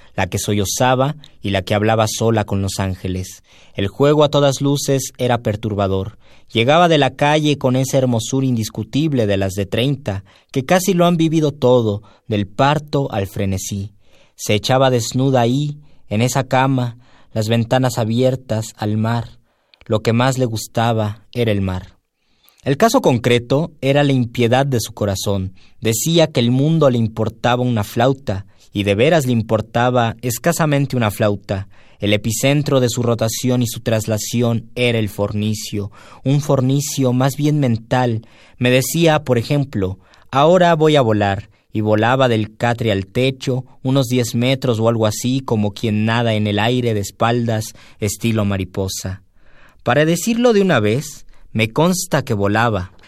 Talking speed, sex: 160 wpm, male